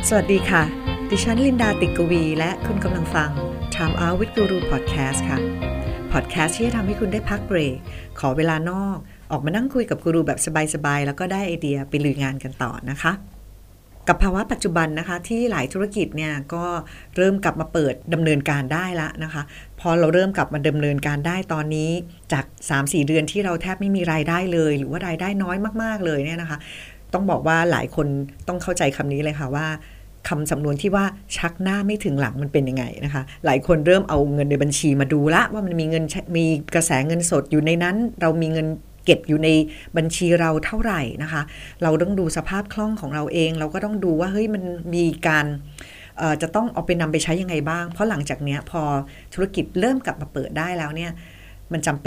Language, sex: Thai, female